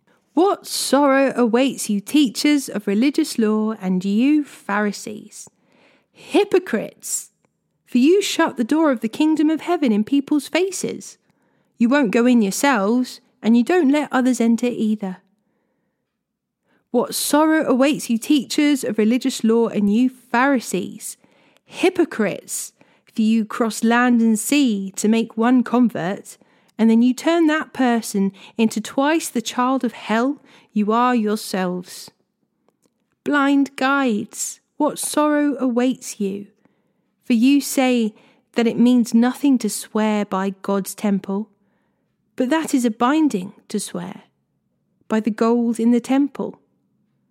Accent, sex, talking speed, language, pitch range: British, female, 135 wpm, English, 220-280 Hz